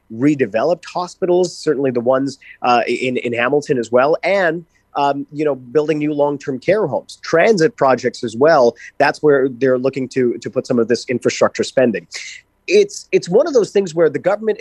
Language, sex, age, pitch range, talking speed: English, male, 30-49, 125-165 Hz, 190 wpm